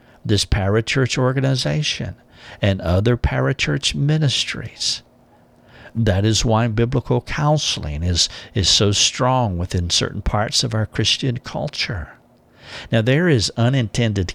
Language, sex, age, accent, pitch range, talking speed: English, male, 60-79, American, 90-130 Hz, 115 wpm